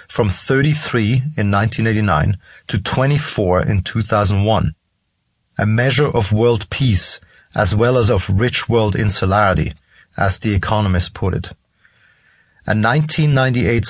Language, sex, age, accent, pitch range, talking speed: English, male, 30-49, German, 100-130 Hz, 115 wpm